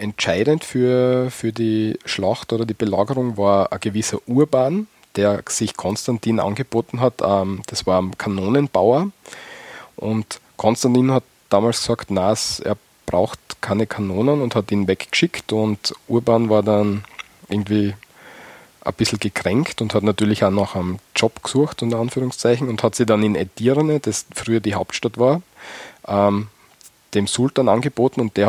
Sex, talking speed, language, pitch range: male, 145 wpm, German, 100-120 Hz